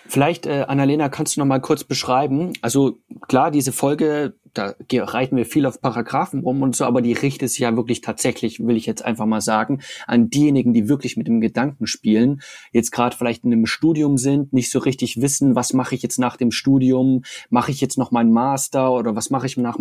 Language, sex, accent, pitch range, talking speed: German, male, German, 115-135 Hz, 220 wpm